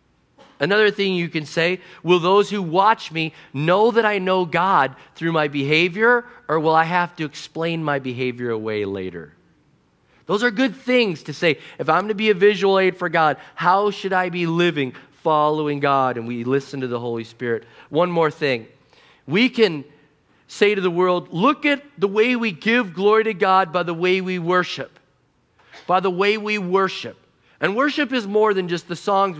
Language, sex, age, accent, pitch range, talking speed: English, male, 40-59, American, 155-205 Hz, 190 wpm